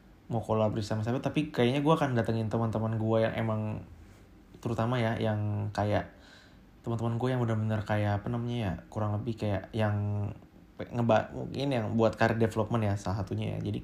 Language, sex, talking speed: Indonesian, male, 170 wpm